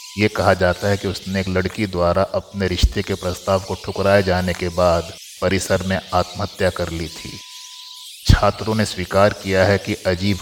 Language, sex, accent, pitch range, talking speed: Hindi, male, native, 95-105 Hz, 180 wpm